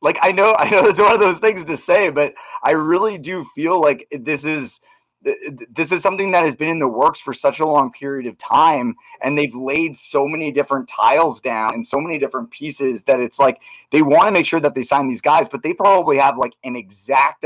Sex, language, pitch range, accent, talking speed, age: male, English, 130-170 Hz, American, 235 wpm, 30-49